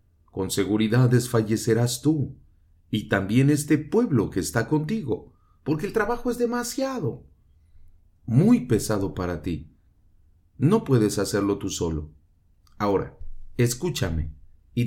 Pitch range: 90-140 Hz